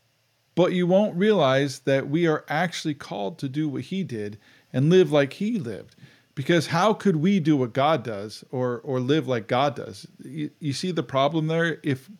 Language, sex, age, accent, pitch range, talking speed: English, male, 40-59, American, 125-160 Hz, 195 wpm